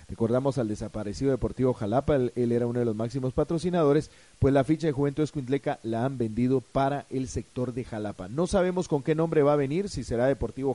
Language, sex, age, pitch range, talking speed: Spanish, male, 40-59, 120-165 Hz, 210 wpm